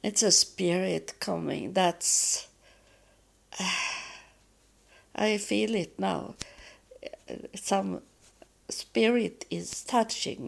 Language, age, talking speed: English, 60-79, 80 wpm